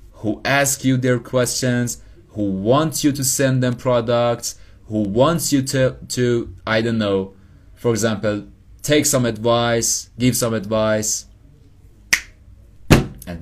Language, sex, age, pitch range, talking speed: English, male, 20-39, 105-135 Hz, 130 wpm